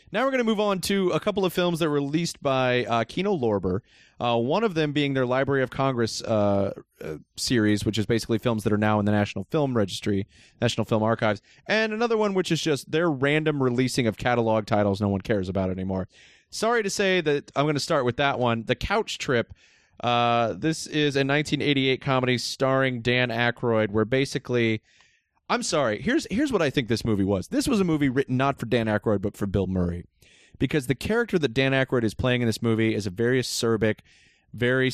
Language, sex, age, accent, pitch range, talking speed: English, male, 30-49, American, 105-140 Hz, 215 wpm